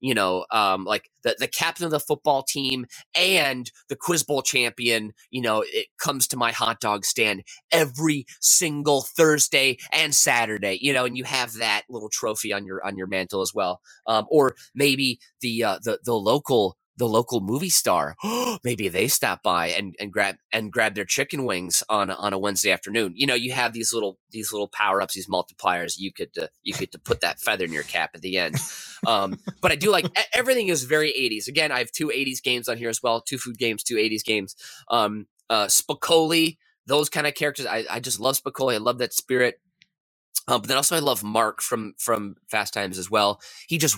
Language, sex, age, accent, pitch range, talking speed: English, male, 30-49, American, 105-145 Hz, 215 wpm